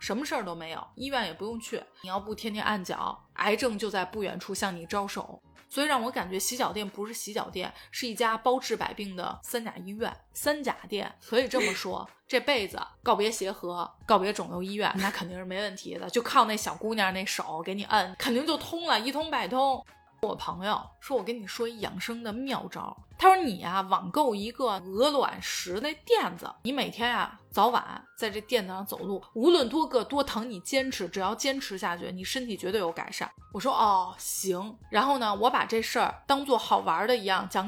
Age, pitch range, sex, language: 20-39, 195-255 Hz, female, Chinese